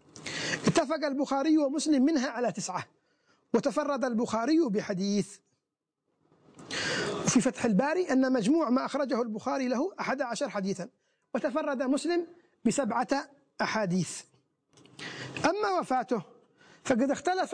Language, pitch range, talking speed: Arabic, 225-295 Hz, 100 wpm